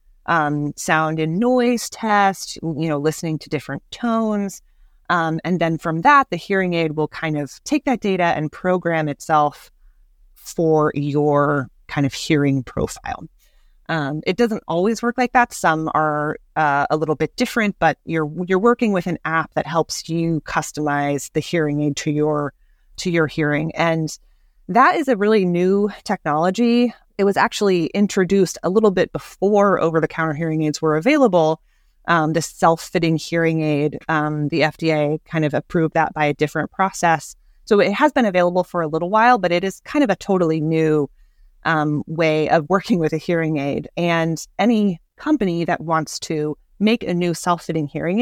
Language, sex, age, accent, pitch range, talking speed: English, female, 30-49, American, 155-200 Hz, 175 wpm